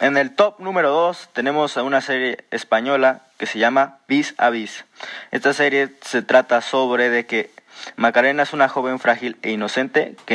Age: 20-39